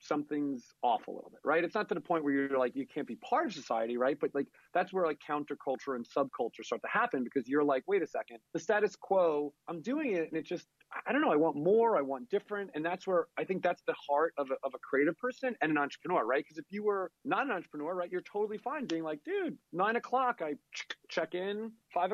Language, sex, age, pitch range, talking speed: English, male, 30-49, 135-180 Hz, 260 wpm